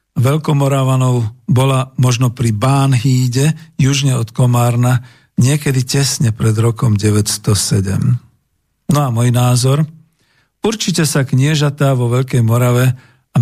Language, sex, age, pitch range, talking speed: Slovak, male, 50-69, 120-145 Hz, 105 wpm